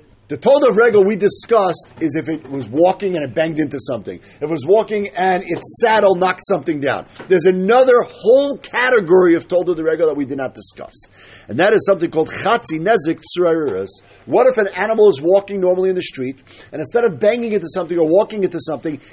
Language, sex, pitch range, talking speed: English, male, 170-235 Hz, 205 wpm